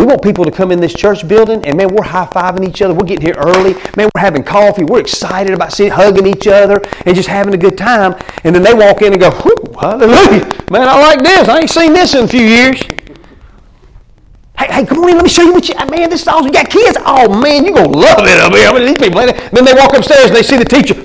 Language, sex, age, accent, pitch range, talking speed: English, male, 40-59, American, 200-320 Hz, 270 wpm